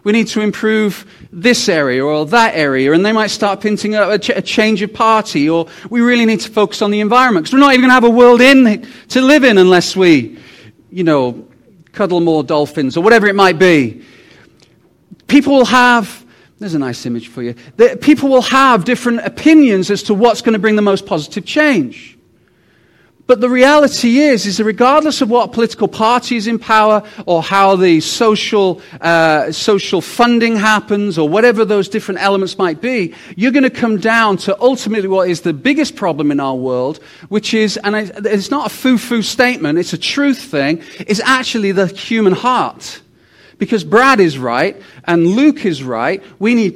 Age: 40-59